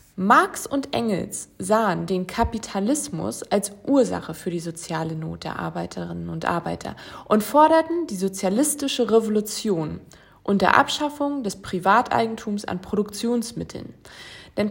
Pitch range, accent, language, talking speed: 195-270 Hz, German, German, 120 wpm